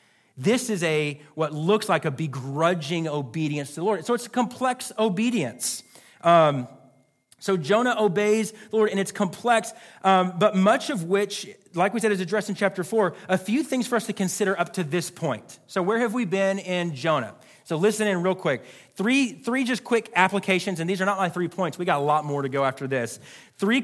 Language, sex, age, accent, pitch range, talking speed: English, male, 40-59, American, 150-205 Hz, 210 wpm